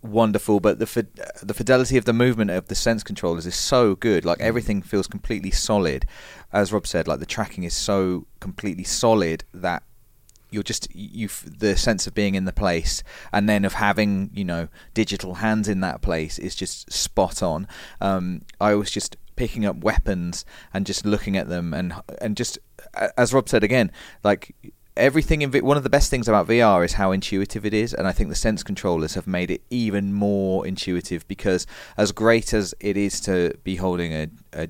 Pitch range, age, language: 90-110 Hz, 30-49, English